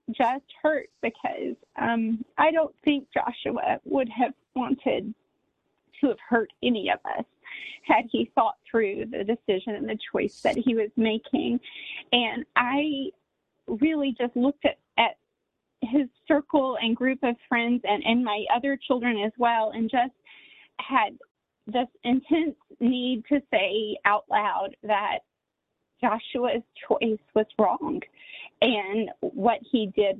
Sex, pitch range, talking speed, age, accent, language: female, 215-265 Hz, 135 wpm, 30-49, American, English